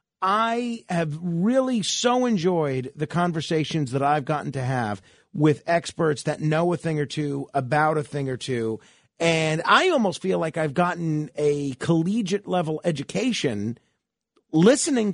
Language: English